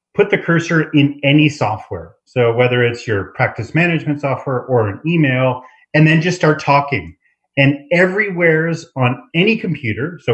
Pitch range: 120-150 Hz